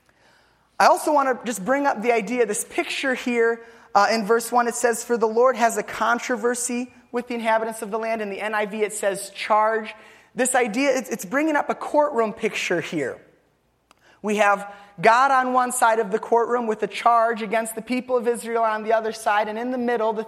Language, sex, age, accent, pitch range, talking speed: English, male, 20-39, American, 195-235 Hz, 210 wpm